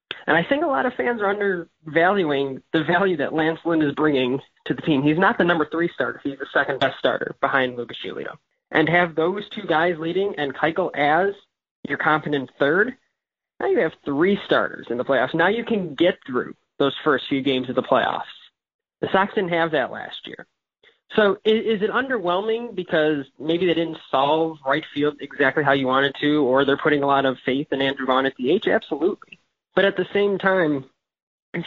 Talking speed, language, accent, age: 205 wpm, English, American, 20-39